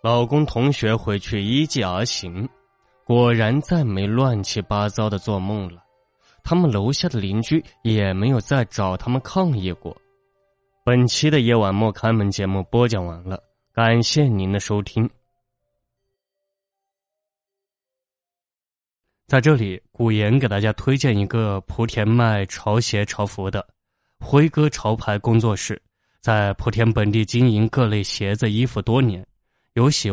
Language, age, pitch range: Chinese, 20-39, 100-130 Hz